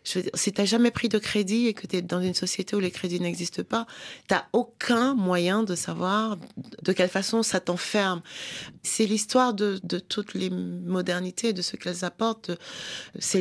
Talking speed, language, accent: 190 wpm, French, French